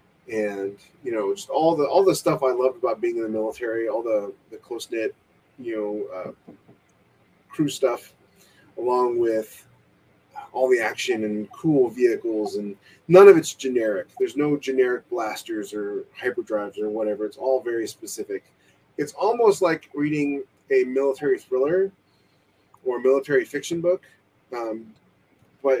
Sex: male